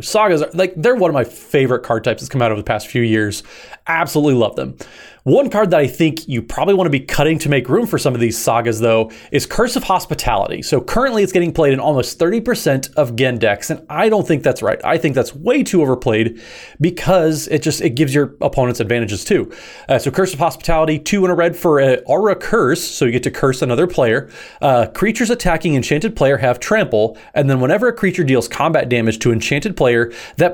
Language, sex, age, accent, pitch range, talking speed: English, male, 30-49, American, 125-170 Hz, 230 wpm